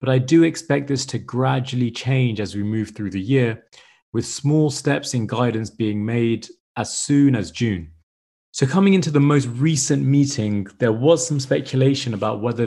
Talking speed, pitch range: 180 wpm, 105-135 Hz